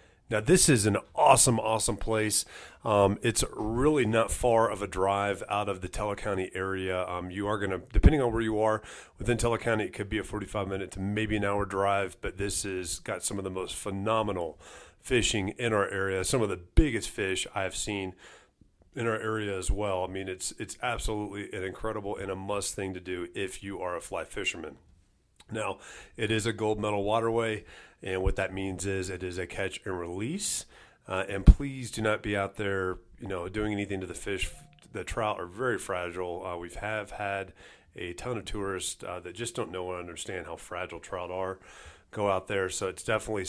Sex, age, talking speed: male, 40-59, 210 wpm